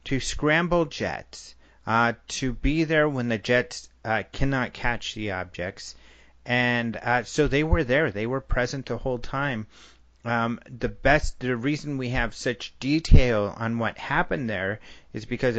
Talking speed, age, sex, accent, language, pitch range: 160 wpm, 30-49, male, American, English, 100-135 Hz